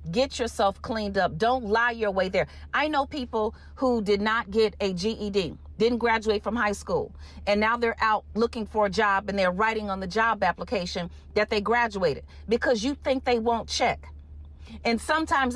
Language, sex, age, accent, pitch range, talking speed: English, female, 40-59, American, 200-260 Hz, 190 wpm